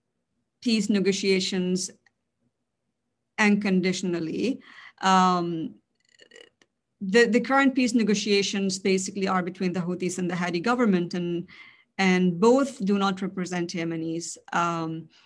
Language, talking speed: English, 100 wpm